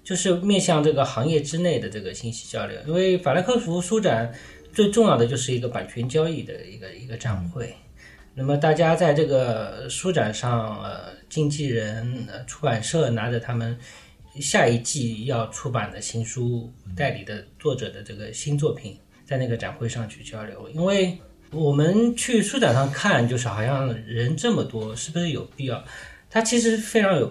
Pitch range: 115-160 Hz